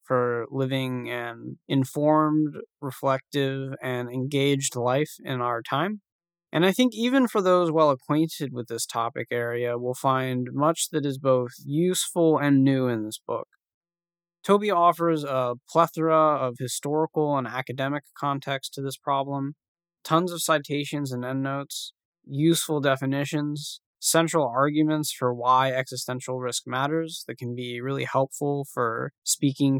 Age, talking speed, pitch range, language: 20-39, 135 wpm, 125-160 Hz, English